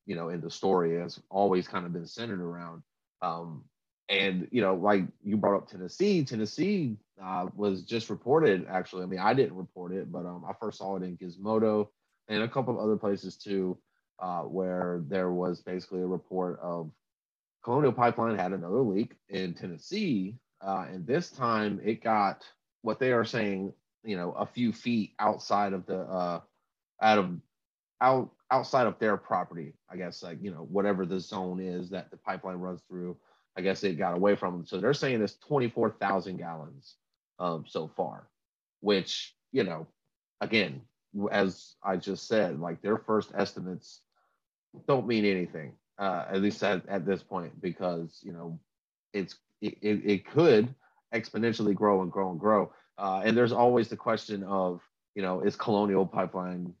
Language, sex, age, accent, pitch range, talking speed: English, male, 30-49, American, 90-110 Hz, 175 wpm